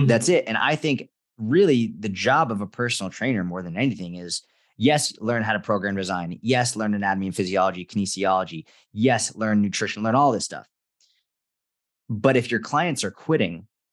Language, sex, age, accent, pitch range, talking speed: English, male, 20-39, American, 105-130 Hz, 175 wpm